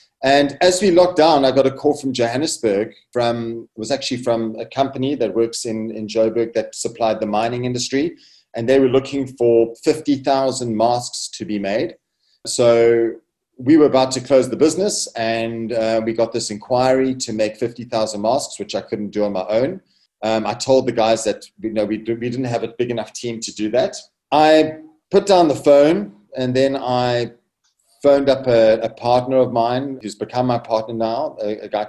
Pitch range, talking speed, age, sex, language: 115-135 Hz, 200 wpm, 40-59, male, English